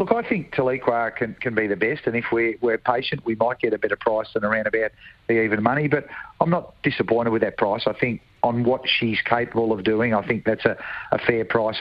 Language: English